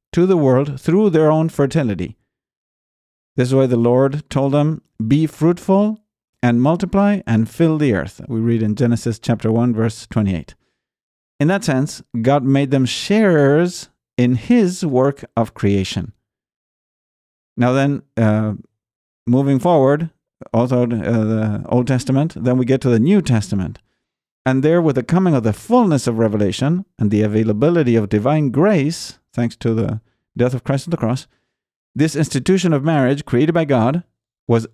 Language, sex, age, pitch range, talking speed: English, male, 50-69, 115-155 Hz, 160 wpm